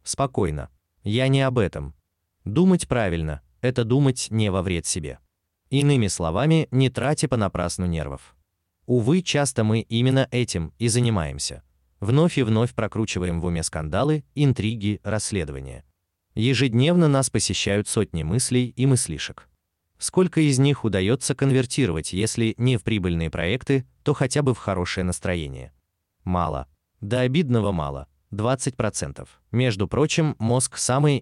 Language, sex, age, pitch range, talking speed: Russian, male, 30-49, 85-130 Hz, 130 wpm